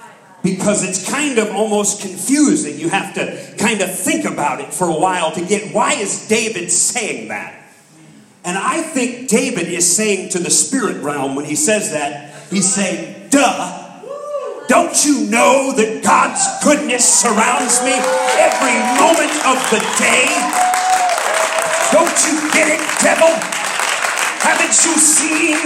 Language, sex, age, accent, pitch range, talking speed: English, male, 40-59, American, 185-275 Hz, 145 wpm